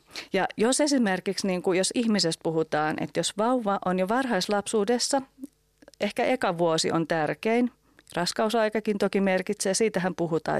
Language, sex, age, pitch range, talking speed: Finnish, female, 30-49, 170-220 Hz, 125 wpm